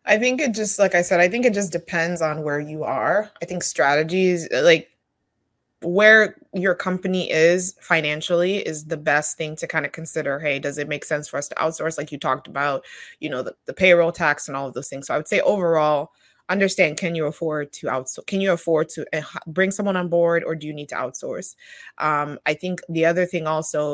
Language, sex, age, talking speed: English, female, 20-39, 225 wpm